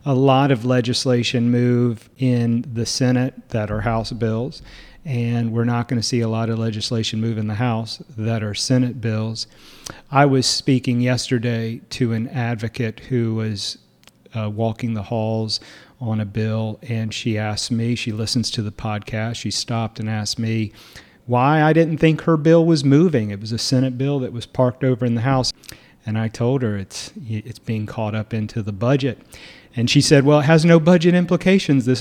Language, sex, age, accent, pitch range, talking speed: English, male, 40-59, American, 110-140 Hz, 190 wpm